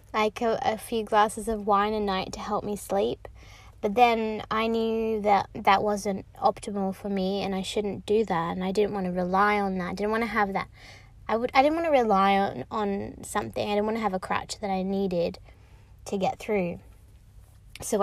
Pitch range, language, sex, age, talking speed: 180-245 Hz, English, female, 20-39, 220 wpm